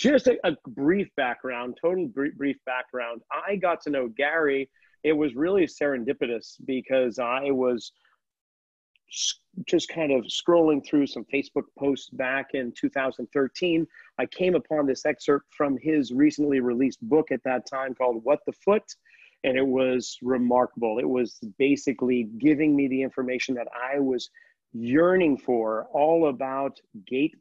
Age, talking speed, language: 40-59, 150 wpm, English